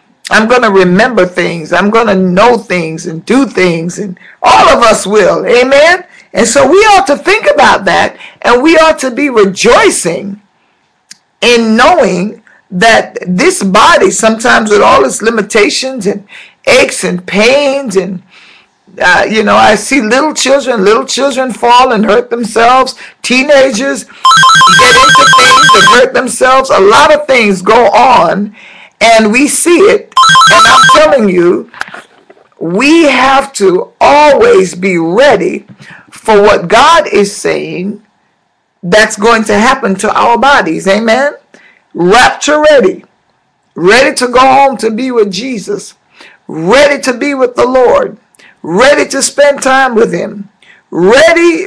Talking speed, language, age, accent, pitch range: 145 wpm, German, 50-69, American, 205-275 Hz